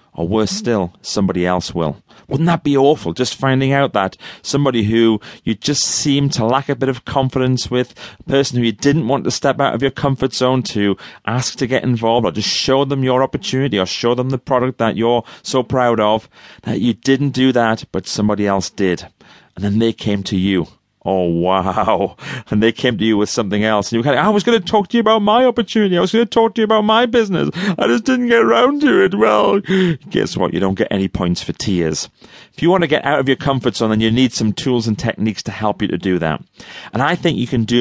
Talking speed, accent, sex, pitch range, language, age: 250 wpm, British, male, 110-145 Hz, English, 30-49